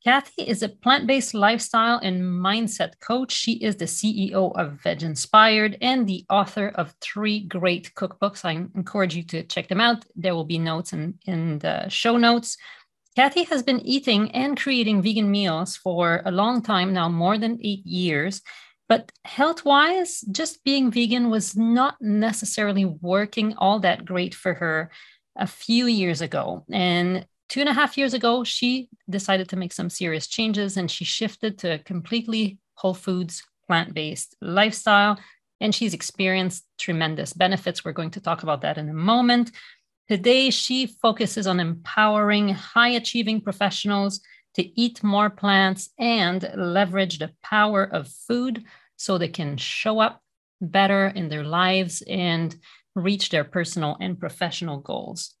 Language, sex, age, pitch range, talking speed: English, female, 40-59, 180-225 Hz, 155 wpm